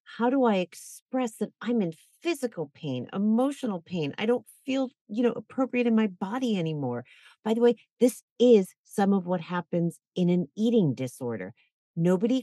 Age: 40-59